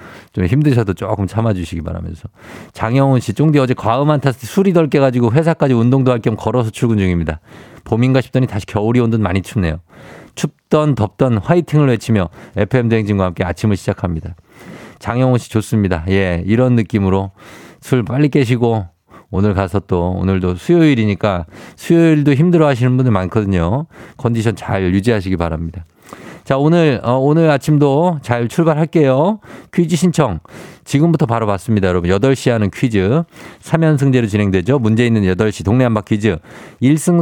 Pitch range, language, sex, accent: 100-145 Hz, Korean, male, native